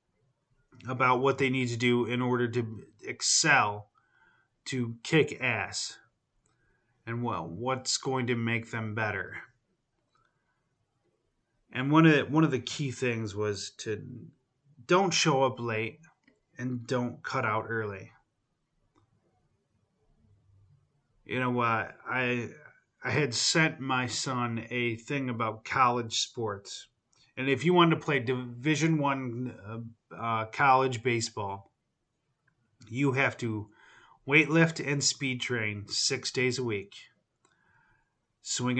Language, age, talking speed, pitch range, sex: English, 30-49, 125 wpm, 115-130 Hz, male